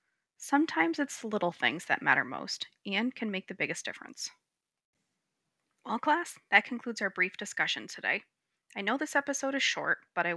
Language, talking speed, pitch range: English, 175 wpm, 180-245 Hz